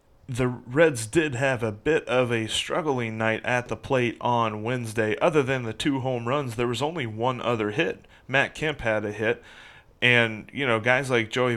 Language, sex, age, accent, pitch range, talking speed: English, male, 30-49, American, 110-130 Hz, 195 wpm